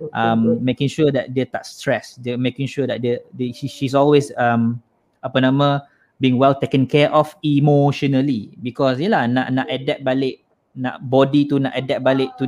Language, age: Malay, 20-39